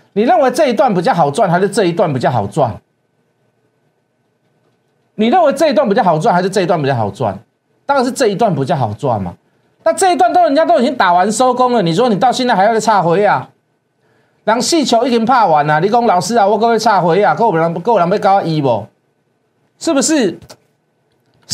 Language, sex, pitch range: Chinese, male, 195-285 Hz